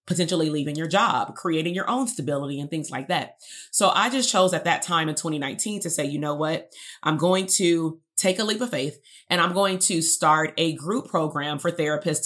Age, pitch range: 30-49, 150-180 Hz